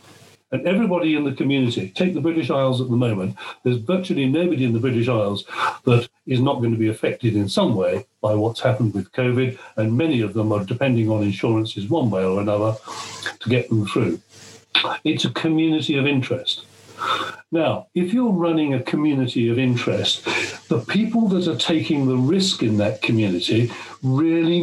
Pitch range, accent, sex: 115-175 Hz, British, male